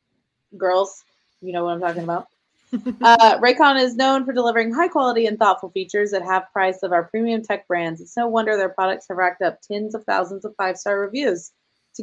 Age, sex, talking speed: 20-39, female, 210 wpm